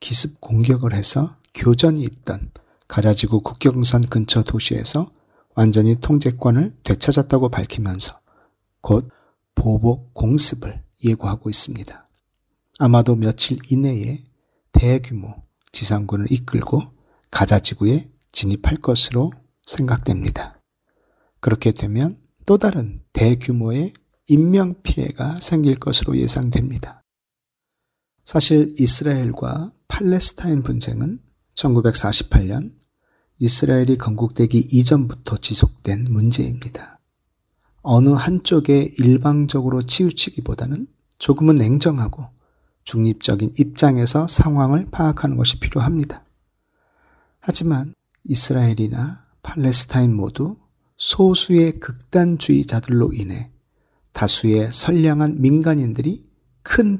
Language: Korean